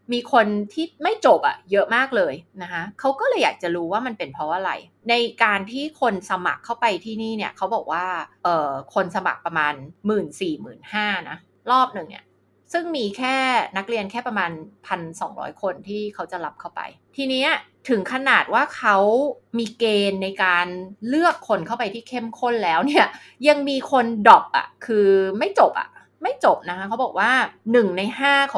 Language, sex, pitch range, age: Thai, female, 195-265 Hz, 20-39